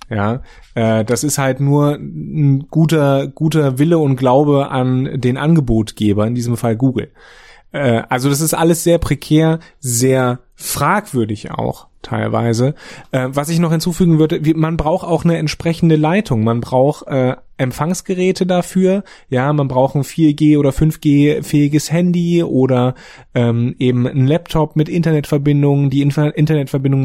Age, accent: 30-49, German